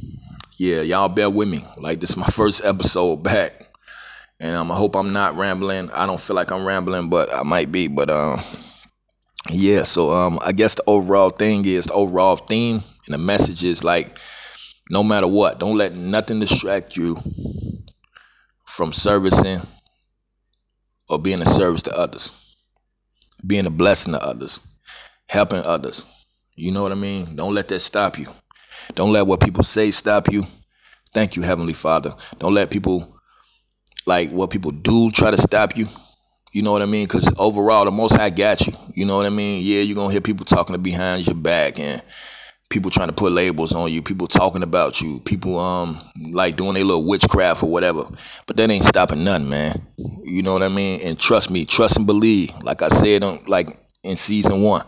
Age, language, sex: 20-39, English, male